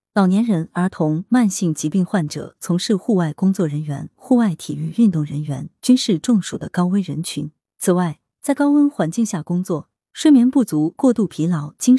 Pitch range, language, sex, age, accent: 160-230 Hz, Chinese, female, 30-49, native